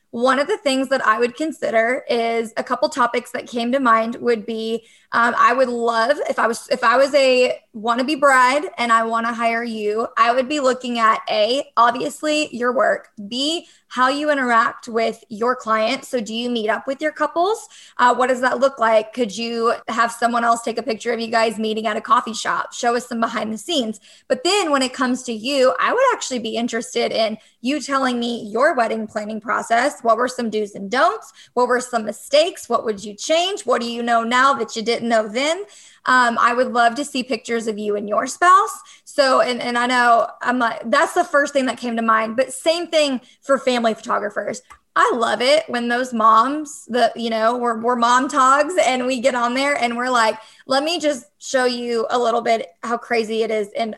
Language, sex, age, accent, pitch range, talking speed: English, female, 20-39, American, 230-275 Hz, 220 wpm